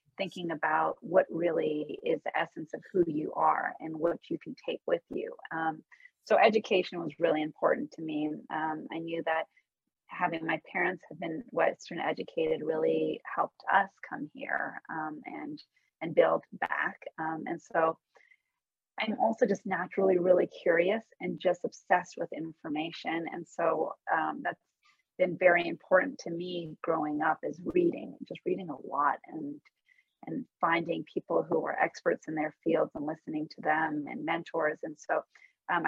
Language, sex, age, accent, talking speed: English, female, 30-49, American, 160 wpm